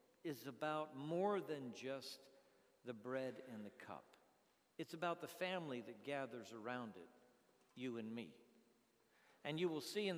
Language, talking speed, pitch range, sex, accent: English, 155 wpm, 130-165 Hz, male, American